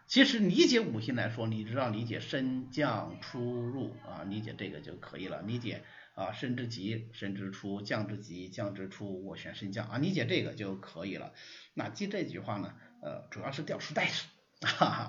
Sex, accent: male, native